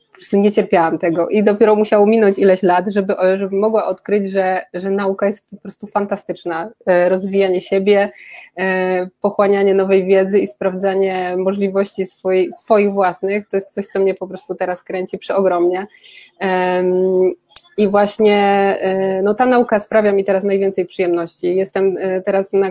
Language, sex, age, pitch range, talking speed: Polish, female, 20-39, 185-205 Hz, 160 wpm